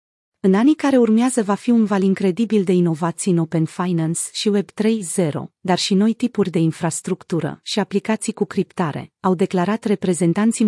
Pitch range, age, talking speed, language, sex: 175-215 Hz, 30-49, 170 wpm, Romanian, female